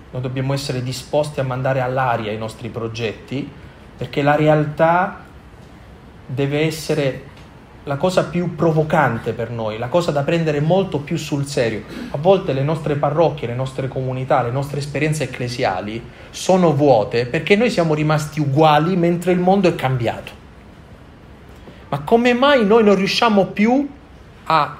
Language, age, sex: Italian, 30-49, male